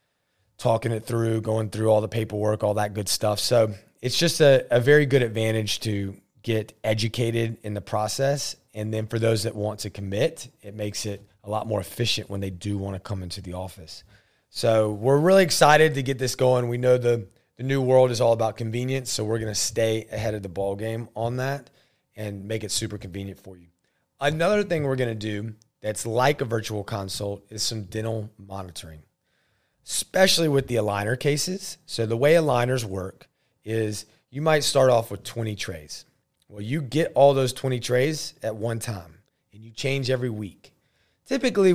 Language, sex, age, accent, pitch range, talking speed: English, male, 30-49, American, 105-135 Hz, 195 wpm